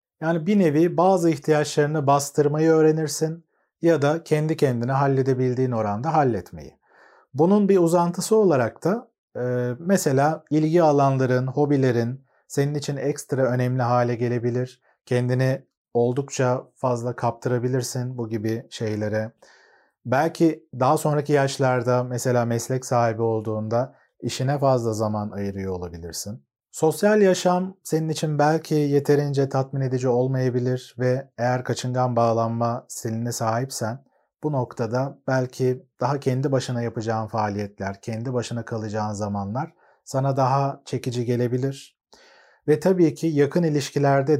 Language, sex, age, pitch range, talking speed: Turkish, male, 40-59, 120-145 Hz, 115 wpm